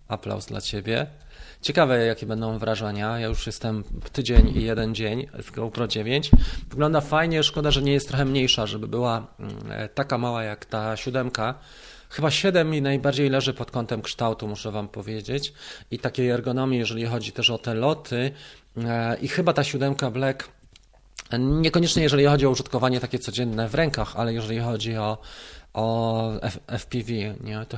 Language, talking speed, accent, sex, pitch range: Polish, 160 wpm, native, male, 110-140 Hz